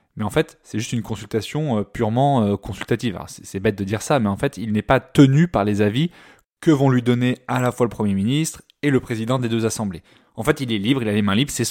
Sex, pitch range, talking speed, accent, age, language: male, 105-135 Hz, 260 wpm, French, 20-39, French